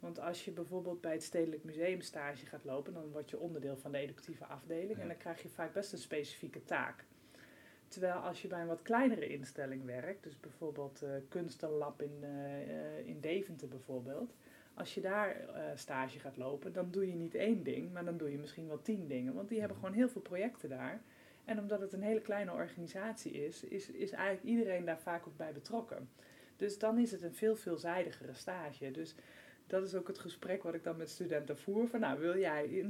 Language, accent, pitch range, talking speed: Dutch, Dutch, 150-190 Hz, 215 wpm